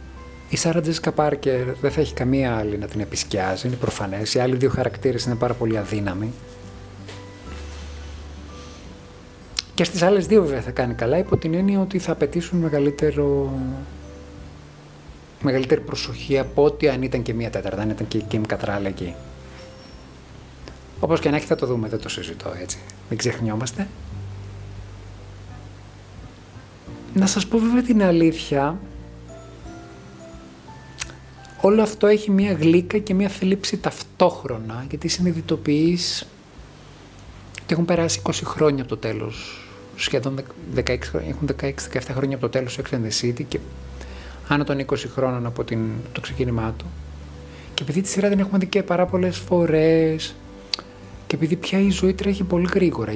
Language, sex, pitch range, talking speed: Greek, male, 100-155 Hz, 140 wpm